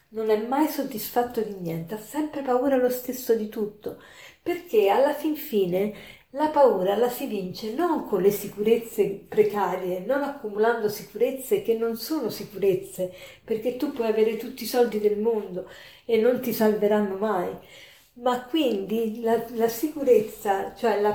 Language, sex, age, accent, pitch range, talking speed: Italian, female, 50-69, native, 200-255 Hz, 155 wpm